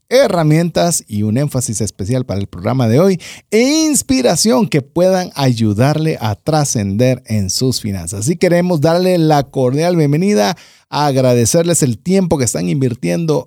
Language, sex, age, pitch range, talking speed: Spanish, male, 40-59, 130-180 Hz, 145 wpm